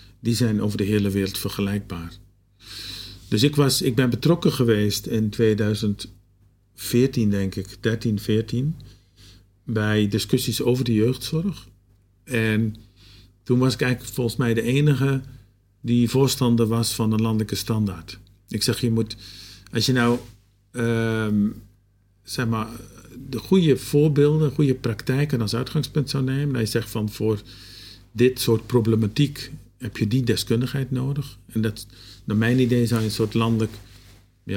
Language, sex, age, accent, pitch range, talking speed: Dutch, male, 50-69, Dutch, 100-125 Hz, 140 wpm